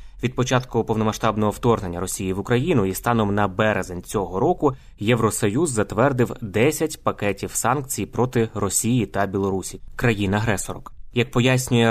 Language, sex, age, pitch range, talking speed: Ukrainian, male, 20-39, 100-125 Hz, 130 wpm